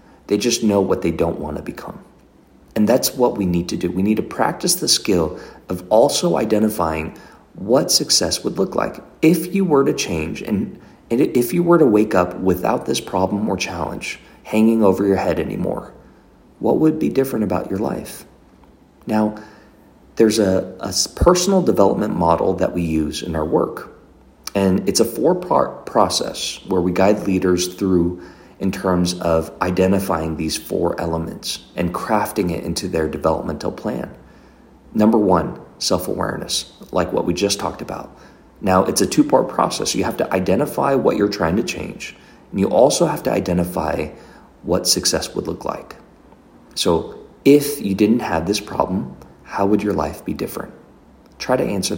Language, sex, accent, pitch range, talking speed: English, male, American, 90-115 Hz, 170 wpm